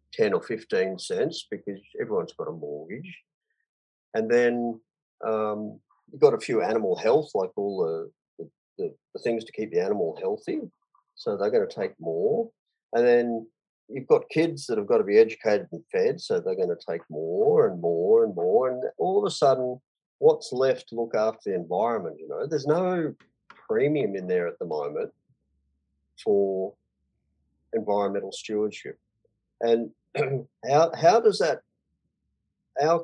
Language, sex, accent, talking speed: English, male, Australian, 160 wpm